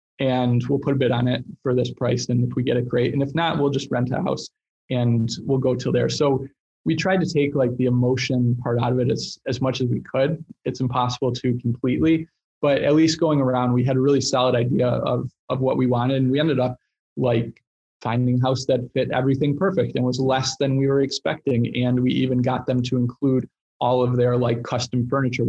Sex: male